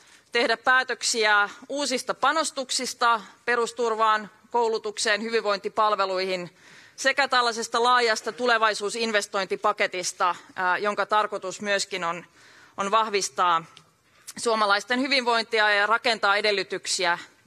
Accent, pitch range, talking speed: native, 205-250 Hz, 75 wpm